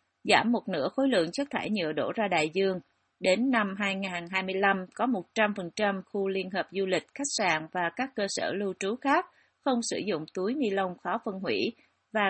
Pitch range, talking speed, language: 185-230 Hz, 200 wpm, Vietnamese